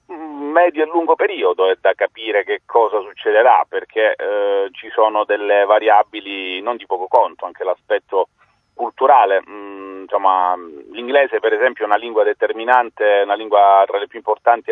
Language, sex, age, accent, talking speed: Italian, male, 40-59, native, 155 wpm